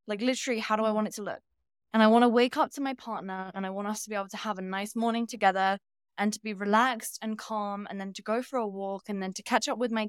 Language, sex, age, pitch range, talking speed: English, female, 20-39, 200-235 Hz, 305 wpm